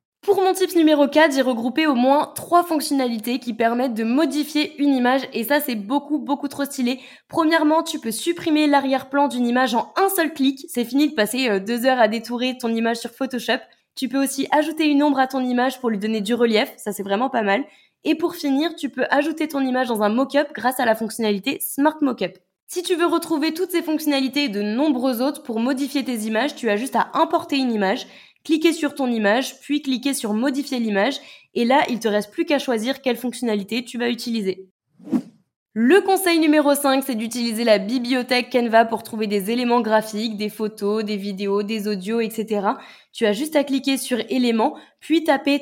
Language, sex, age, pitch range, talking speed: French, female, 20-39, 225-285 Hz, 210 wpm